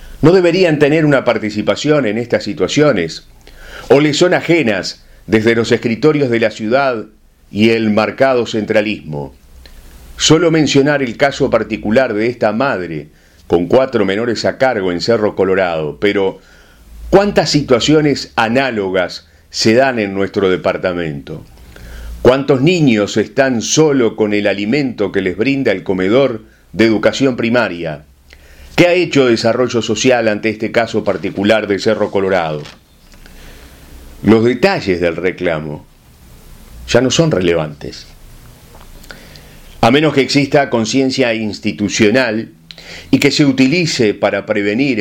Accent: Argentinian